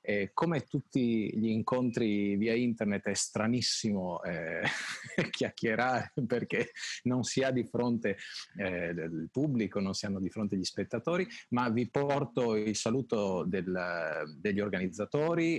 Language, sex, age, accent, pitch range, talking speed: Italian, male, 30-49, native, 95-135 Hz, 135 wpm